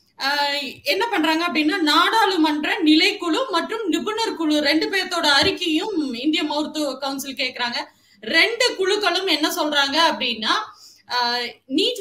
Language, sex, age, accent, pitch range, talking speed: Tamil, female, 20-39, native, 295-355 Hz, 105 wpm